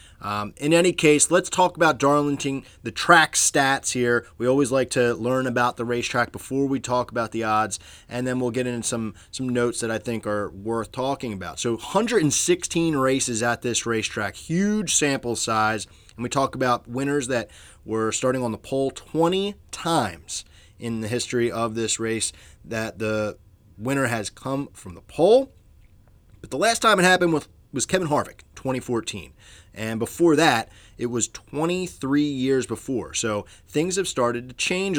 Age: 20-39